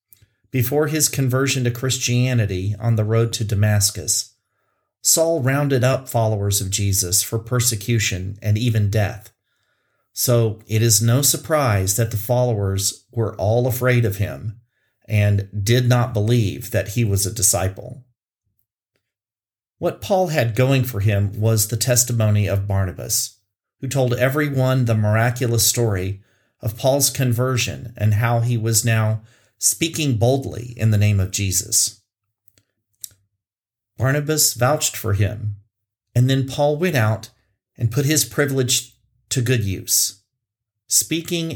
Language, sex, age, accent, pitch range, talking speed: English, male, 40-59, American, 105-125 Hz, 135 wpm